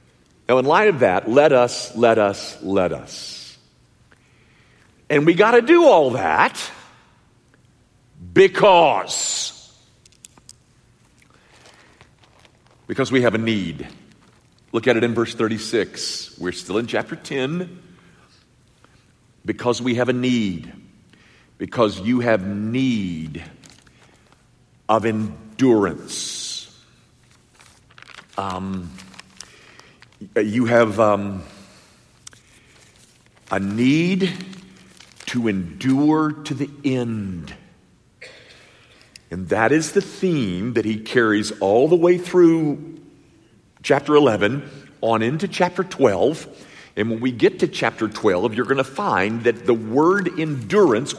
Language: English